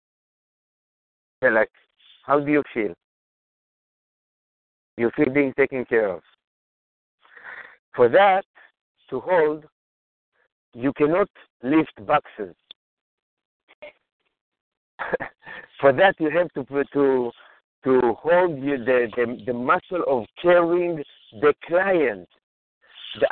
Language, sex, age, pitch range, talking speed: English, male, 60-79, 140-200 Hz, 100 wpm